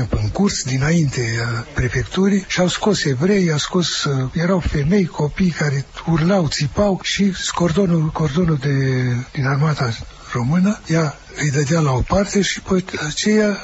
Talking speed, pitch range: 145 wpm, 135-185 Hz